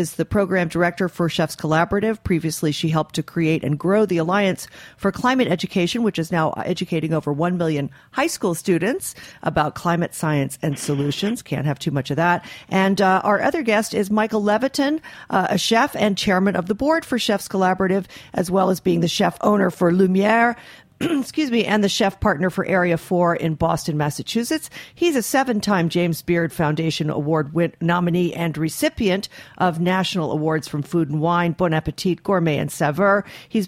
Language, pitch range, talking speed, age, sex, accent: English, 165-225 Hz, 185 wpm, 50-69, female, American